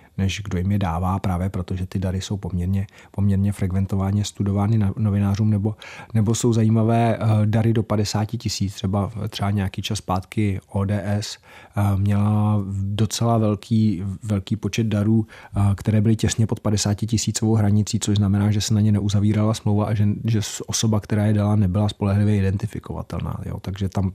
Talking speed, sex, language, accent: 155 wpm, male, Czech, native